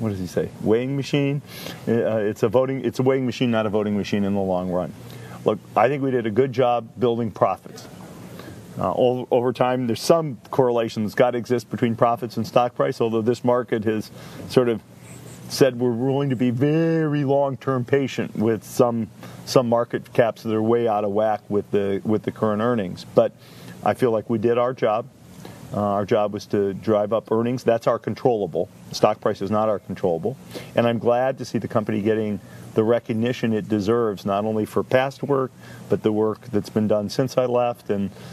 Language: English